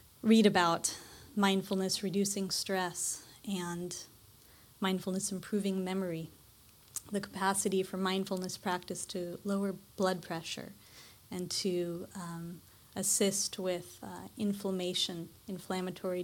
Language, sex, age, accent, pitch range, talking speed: English, female, 30-49, American, 180-205 Hz, 95 wpm